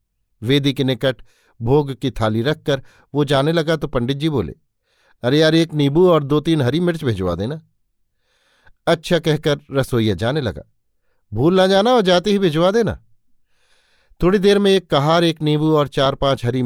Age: 50-69